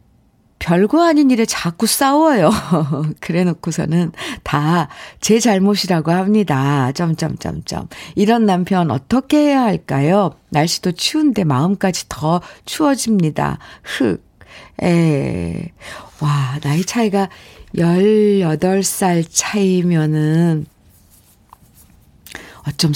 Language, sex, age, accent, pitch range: Korean, female, 50-69, native, 160-225 Hz